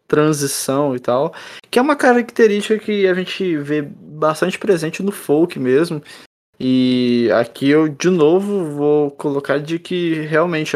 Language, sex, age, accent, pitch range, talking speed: Portuguese, male, 20-39, Brazilian, 135-175 Hz, 145 wpm